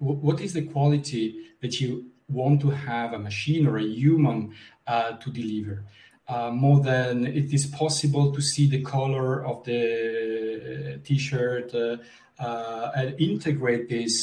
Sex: male